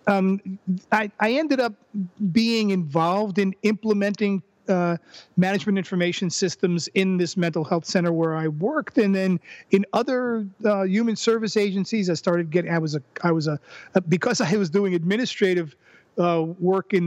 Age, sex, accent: 40-59, male, American